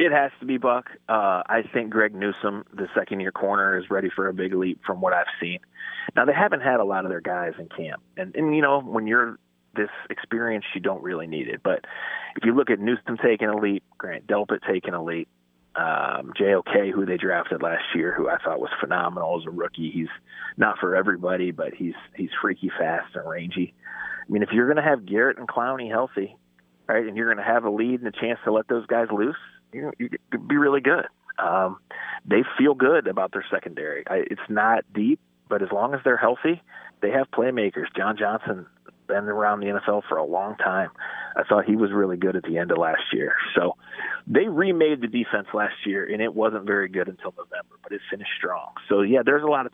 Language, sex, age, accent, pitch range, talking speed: English, male, 30-49, American, 95-120 Hz, 225 wpm